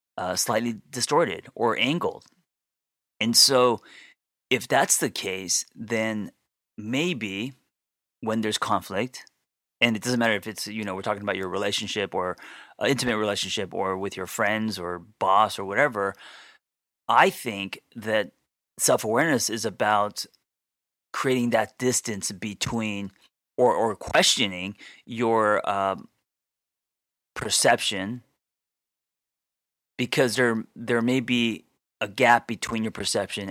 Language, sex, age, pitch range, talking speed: English, male, 30-49, 100-120 Hz, 120 wpm